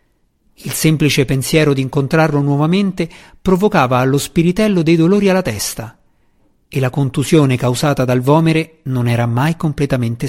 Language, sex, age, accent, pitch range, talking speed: Italian, male, 50-69, native, 130-175 Hz, 135 wpm